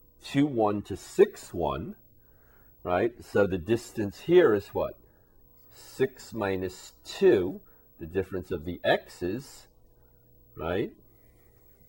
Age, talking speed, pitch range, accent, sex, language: 40-59, 105 wpm, 85-115 Hz, American, male, English